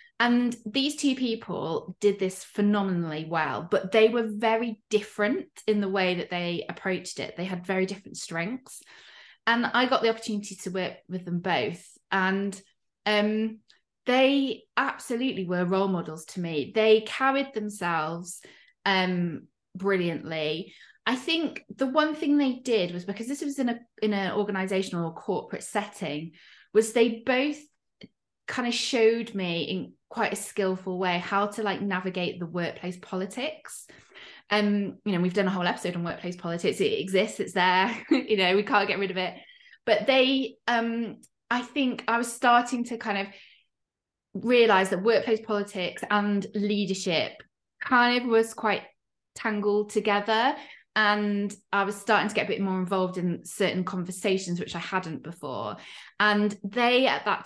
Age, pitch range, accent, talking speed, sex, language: 20-39, 185-230 Hz, British, 160 wpm, female, English